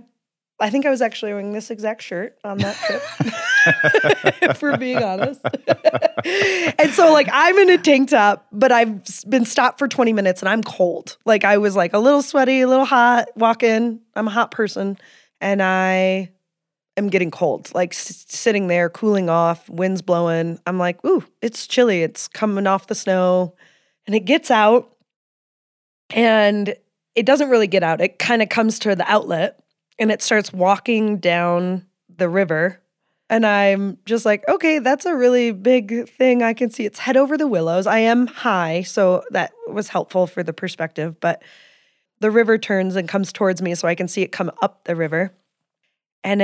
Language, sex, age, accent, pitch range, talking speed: English, female, 20-39, American, 185-245 Hz, 185 wpm